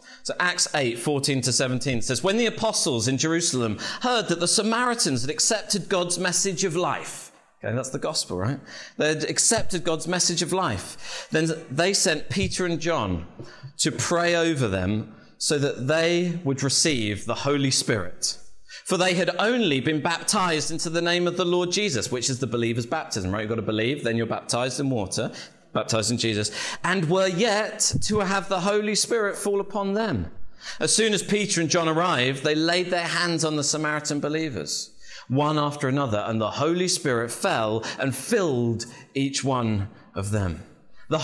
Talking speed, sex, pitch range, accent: 180 wpm, male, 125-180 Hz, British